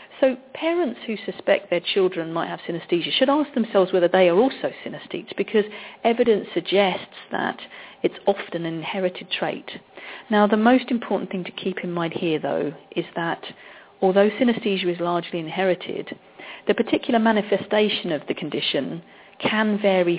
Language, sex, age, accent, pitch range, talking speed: English, female, 40-59, British, 170-215 Hz, 155 wpm